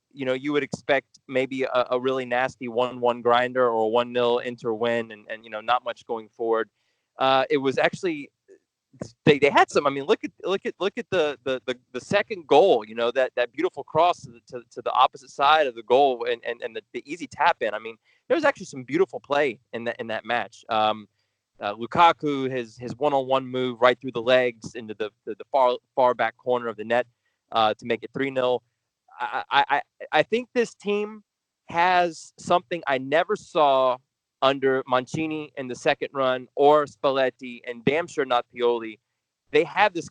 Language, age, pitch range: English, 20-39, 120-160 Hz